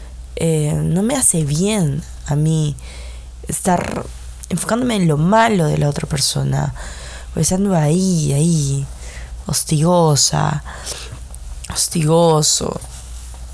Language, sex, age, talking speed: Spanish, female, 20-39, 100 wpm